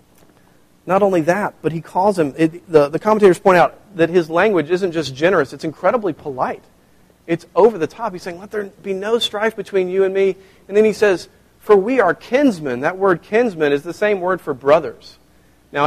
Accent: American